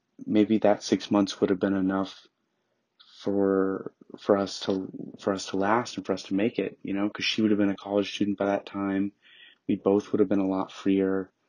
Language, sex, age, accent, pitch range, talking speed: English, male, 20-39, American, 95-110 Hz, 225 wpm